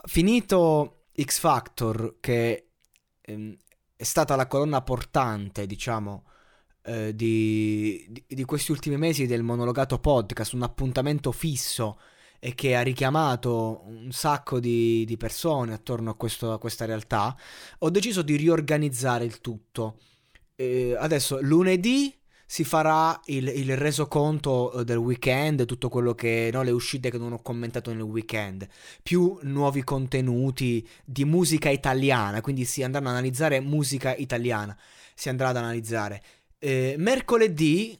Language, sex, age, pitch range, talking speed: Italian, male, 20-39, 115-155 Hz, 135 wpm